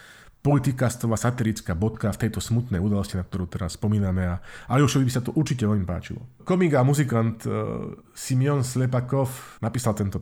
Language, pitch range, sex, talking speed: Slovak, 100-125 Hz, male, 165 wpm